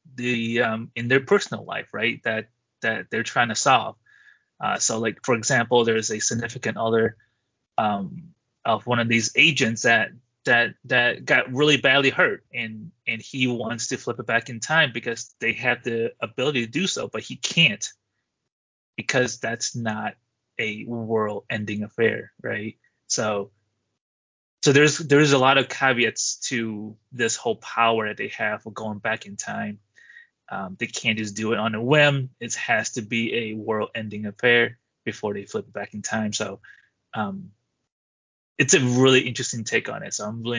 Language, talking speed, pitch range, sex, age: English, 175 wpm, 110-130 Hz, male, 20-39